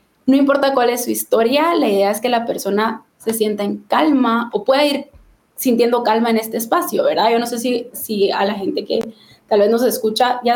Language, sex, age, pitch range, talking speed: Spanish, female, 20-39, 220-270 Hz, 220 wpm